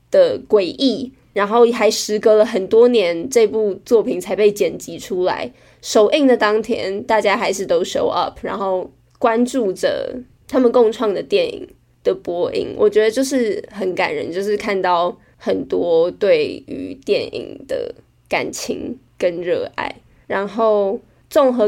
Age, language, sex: 20-39, Chinese, female